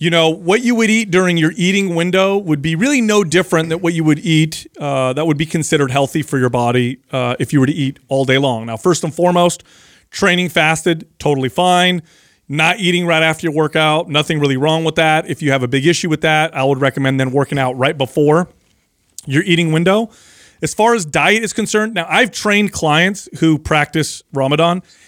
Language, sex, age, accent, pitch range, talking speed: English, male, 30-49, American, 140-175 Hz, 215 wpm